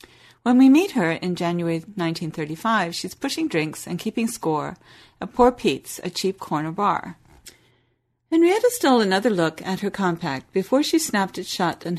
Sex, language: female, English